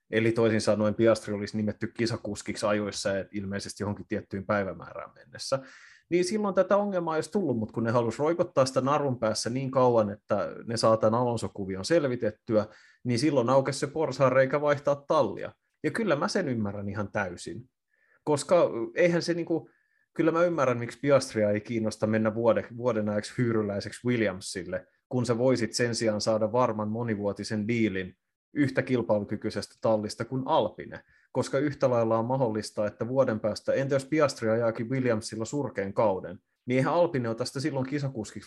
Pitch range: 110-135 Hz